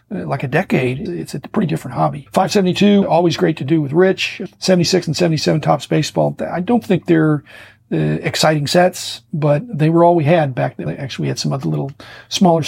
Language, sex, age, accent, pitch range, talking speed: English, male, 50-69, American, 145-175 Hz, 205 wpm